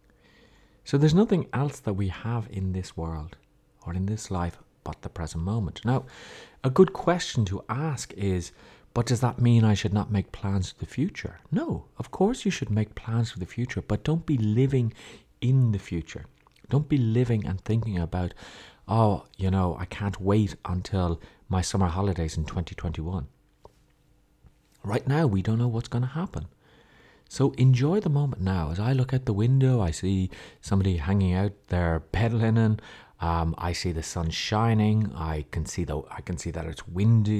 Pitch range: 90-120 Hz